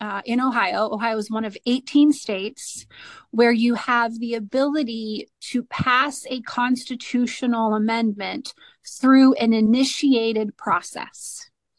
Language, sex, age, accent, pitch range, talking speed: English, female, 30-49, American, 225-270 Hz, 115 wpm